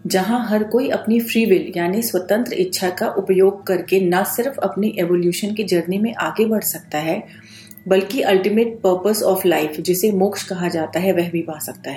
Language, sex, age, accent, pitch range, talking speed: Hindi, female, 40-59, native, 180-215 Hz, 185 wpm